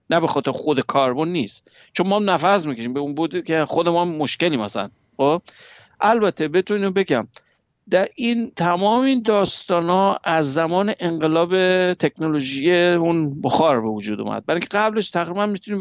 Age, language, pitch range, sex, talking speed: 60-79, Persian, 150-195 Hz, male, 155 wpm